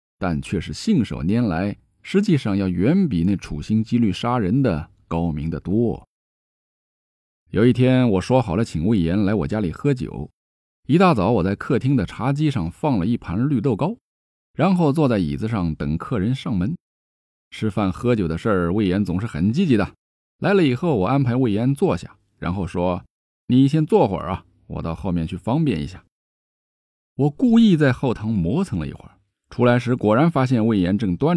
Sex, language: male, Chinese